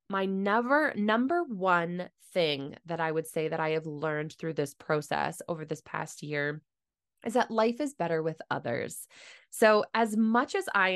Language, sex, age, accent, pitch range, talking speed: English, female, 20-39, American, 175-235 Hz, 180 wpm